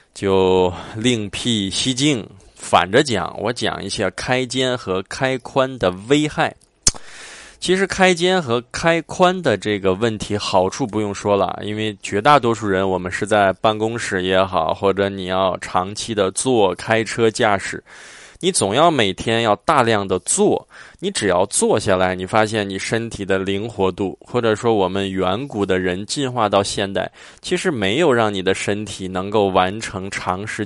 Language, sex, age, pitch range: Chinese, male, 20-39, 95-125 Hz